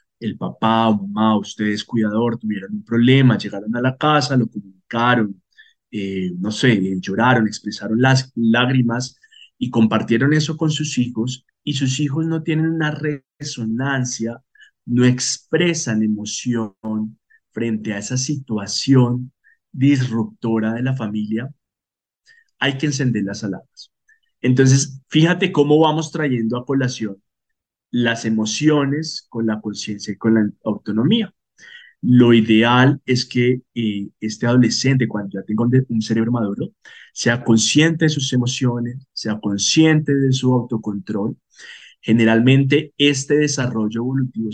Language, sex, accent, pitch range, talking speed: Spanish, male, Colombian, 110-135 Hz, 130 wpm